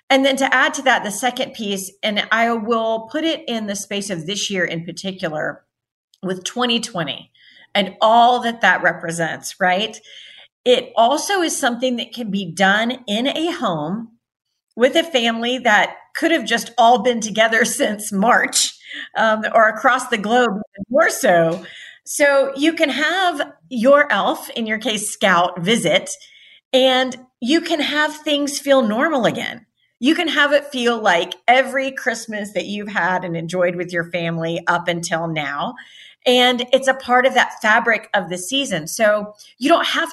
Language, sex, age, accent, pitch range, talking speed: English, female, 40-59, American, 190-265 Hz, 165 wpm